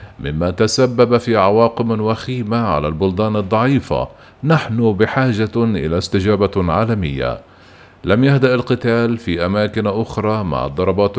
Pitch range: 95-115 Hz